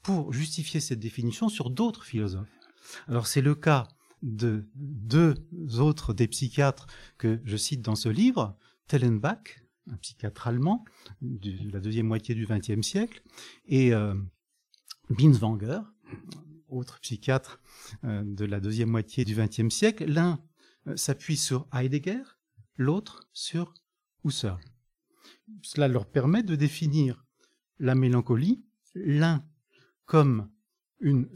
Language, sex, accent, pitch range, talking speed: French, male, French, 120-170 Hz, 120 wpm